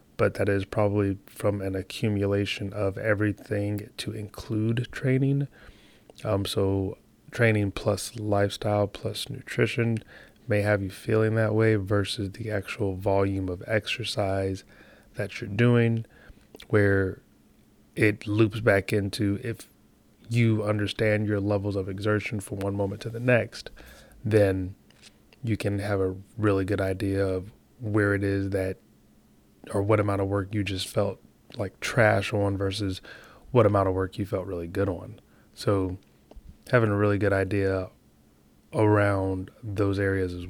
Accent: American